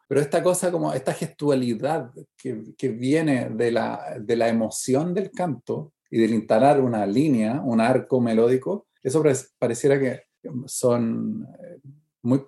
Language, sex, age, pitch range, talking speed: Spanish, male, 40-59, 120-150 Hz, 140 wpm